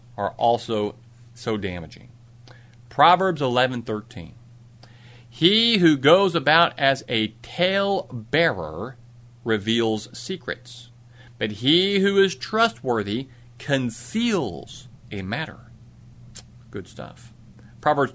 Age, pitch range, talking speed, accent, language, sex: 40-59, 120-175 Hz, 85 wpm, American, English, male